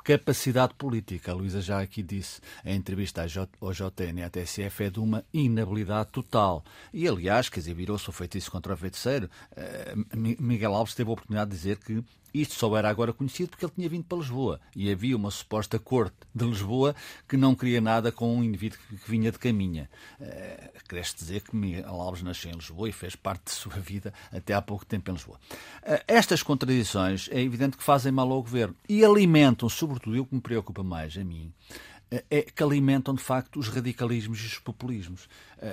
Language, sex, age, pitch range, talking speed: Portuguese, male, 50-69, 95-125 Hz, 195 wpm